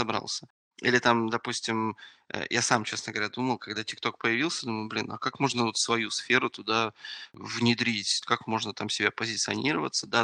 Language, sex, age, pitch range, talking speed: Russian, male, 20-39, 110-125 Hz, 165 wpm